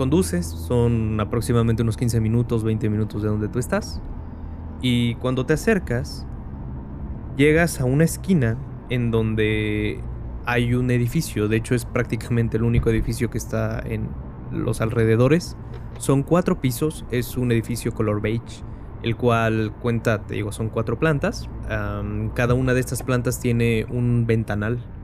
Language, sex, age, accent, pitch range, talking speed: Spanish, male, 20-39, Mexican, 110-125 Hz, 150 wpm